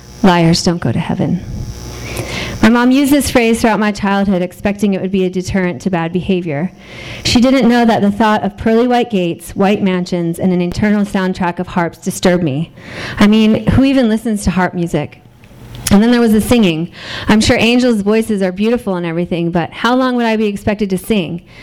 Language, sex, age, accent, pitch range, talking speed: English, female, 30-49, American, 175-220 Hz, 205 wpm